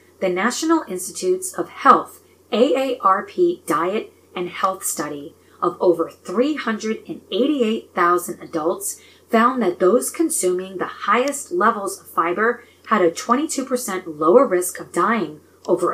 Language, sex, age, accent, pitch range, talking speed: English, female, 30-49, American, 170-250 Hz, 115 wpm